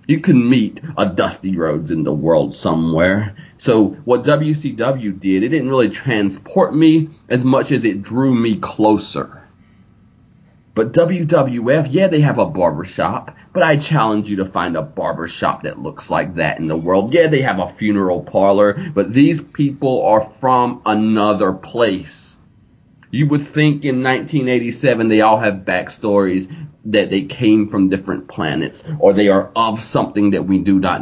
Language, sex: English, male